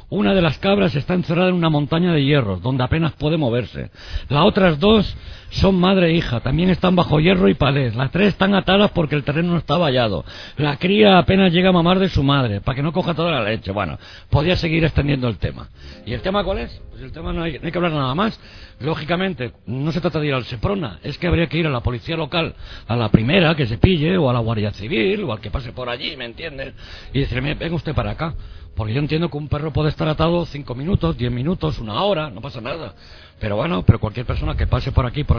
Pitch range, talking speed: 115-165 Hz, 250 wpm